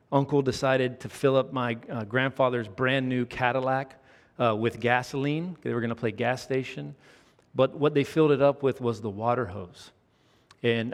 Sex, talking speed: male, 180 wpm